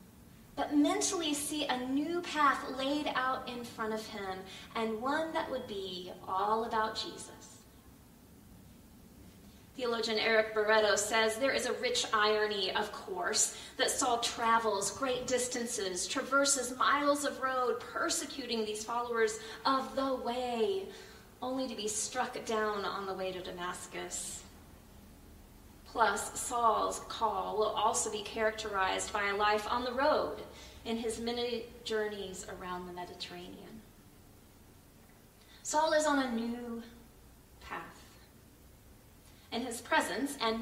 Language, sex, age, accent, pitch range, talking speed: English, female, 30-49, American, 210-265 Hz, 125 wpm